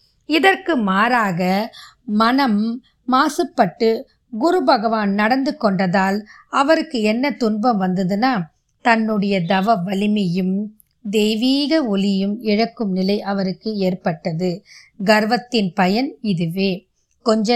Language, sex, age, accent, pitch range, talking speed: Tamil, female, 20-39, native, 195-245 Hz, 50 wpm